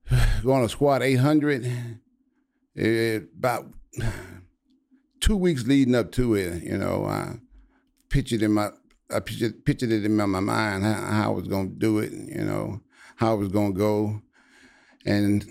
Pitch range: 100-120 Hz